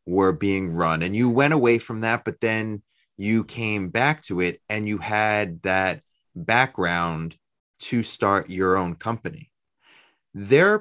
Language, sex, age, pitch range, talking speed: English, male, 30-49, 90-125 Hz, 155 wpm